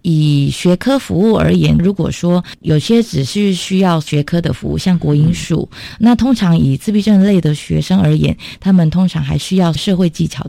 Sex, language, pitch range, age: female, Chinese, 155-195 Hz, 20-39